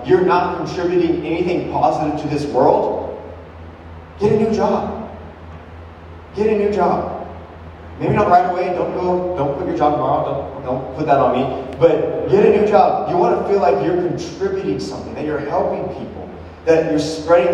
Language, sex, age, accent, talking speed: English, male, 30-49, American, 180 wpm